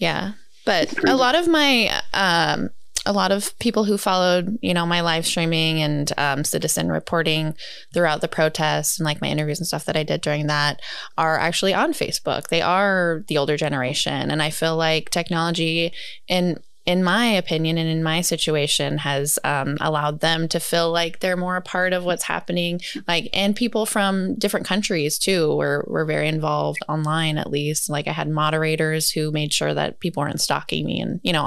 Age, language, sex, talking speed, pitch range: 20-39, English, female, 195 wpm, 155-185 Hz